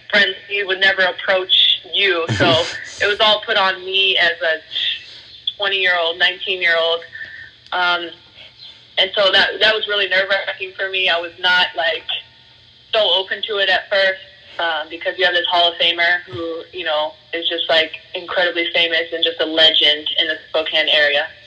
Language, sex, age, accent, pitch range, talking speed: English, female, 20-39, American, 170-195 Hz, 170 wpm